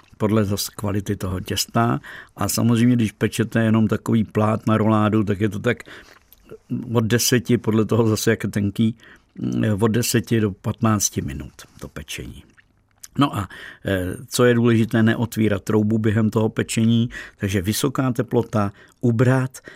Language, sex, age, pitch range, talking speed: Czech, male, 50-69, 105-115 Hz, 140 wpm